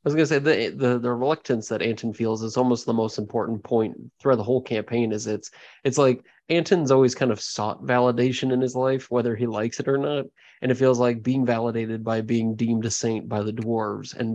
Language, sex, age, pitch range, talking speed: English, male, 20-39, 115-130 Hz, 235 wpm